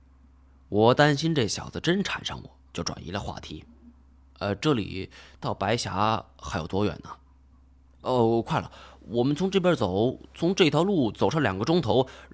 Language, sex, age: Chinese, male, 20-39